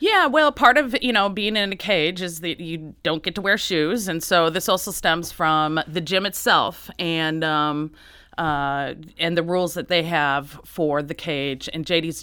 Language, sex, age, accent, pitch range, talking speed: English, female, 30-49, American, 145-175 Hz, 200 wpm